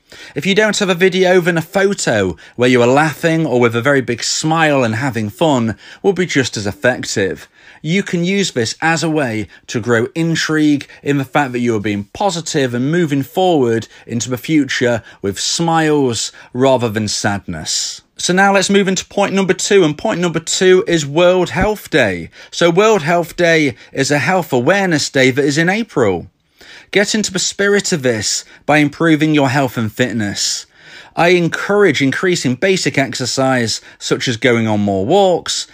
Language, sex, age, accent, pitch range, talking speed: English, male, 40-59, British, 125-175 Hz, 180 wpm